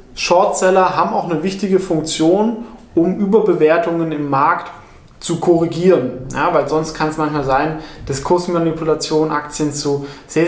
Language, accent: German, German